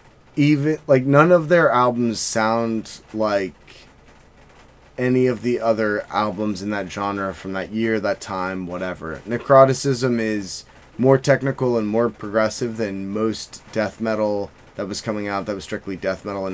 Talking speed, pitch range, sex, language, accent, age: 155 wpm, 105-125 Hz, male, English, American, 20-39